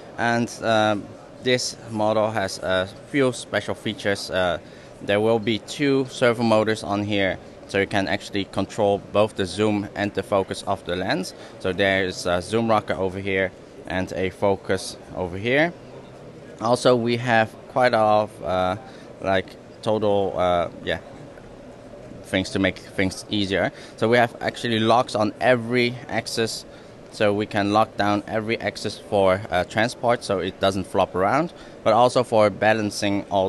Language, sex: English, male